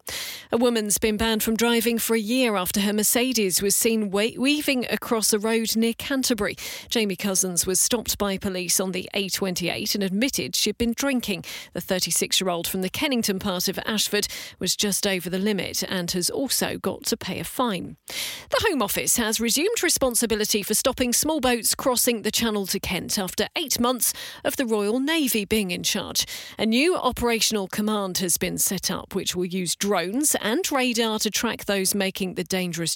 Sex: female